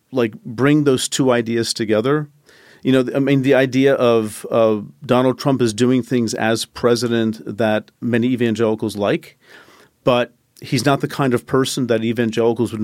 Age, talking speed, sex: 40-59, 165 wpm, male